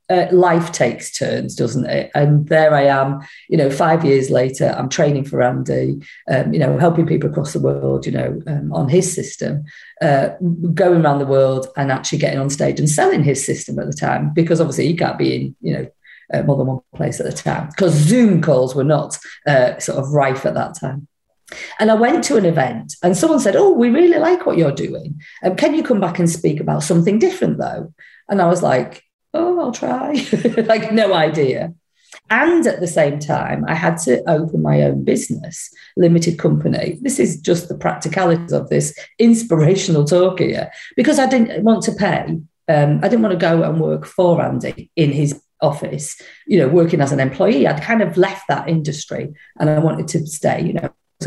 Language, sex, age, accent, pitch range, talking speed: English, female, 40-59, British, 140-195 Hz, 210 wpm